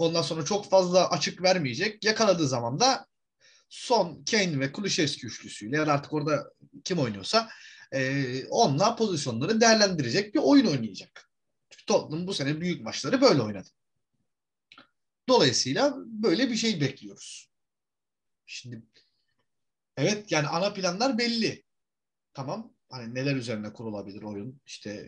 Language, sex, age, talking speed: Turkish, male, 30-49, 120 wpm